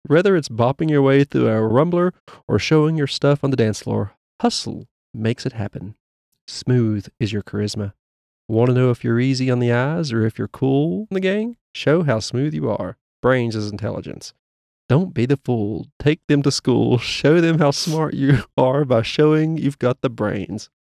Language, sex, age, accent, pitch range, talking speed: English, male, 30-49, American, 105-140 Hz, 195 wpm